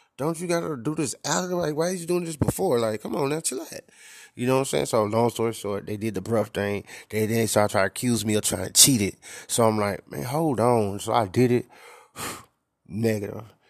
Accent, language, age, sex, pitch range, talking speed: American, English, 20-39, male, 100-115 Hz, 260 wpm